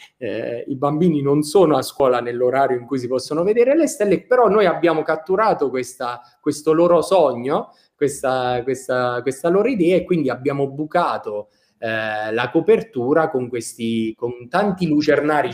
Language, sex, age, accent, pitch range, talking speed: Italian, male, 20-39, native, 115-160 Hz, 155 wpm